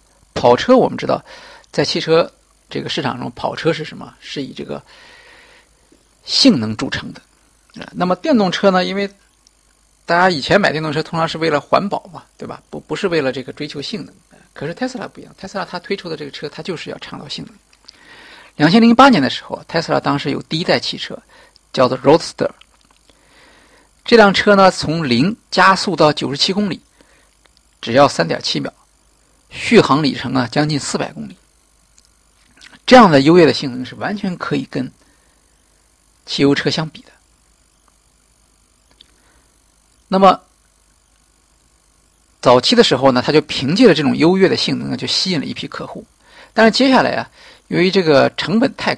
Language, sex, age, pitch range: Chinese, male, 50-69, 120-195 Hz